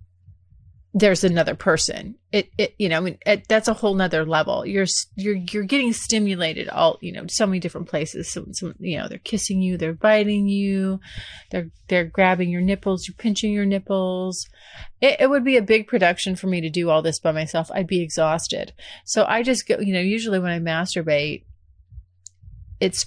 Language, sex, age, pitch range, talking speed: English, female, 30-49, 165-215 Hz, 190 wpm